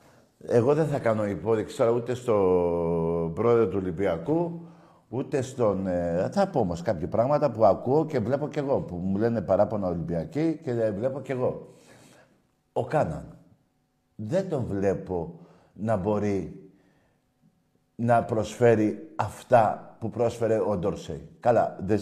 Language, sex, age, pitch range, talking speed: Greek, male, 50-69, 100-135 Hz, 130 wpm